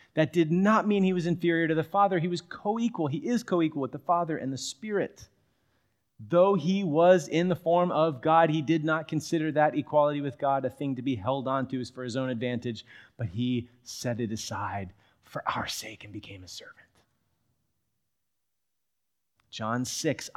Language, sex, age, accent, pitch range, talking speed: English, male, 30-49, American, 110-150 Hz, 185 wpm